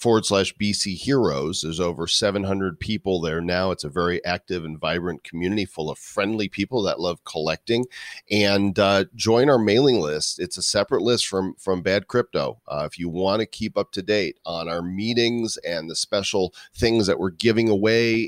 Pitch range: 90-120 Hz